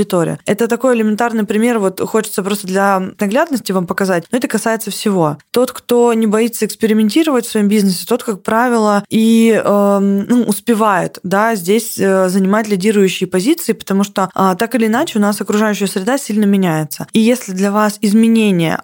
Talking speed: 170 wpm